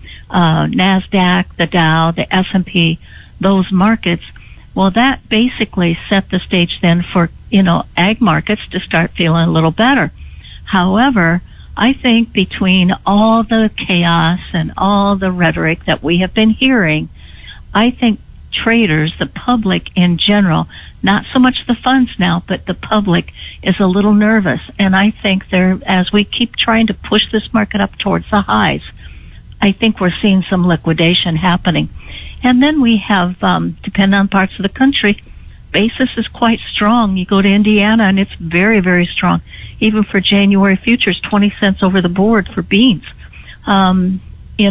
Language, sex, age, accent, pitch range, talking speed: English, female, 60-79, American, 180-215 Hz, 165 wpm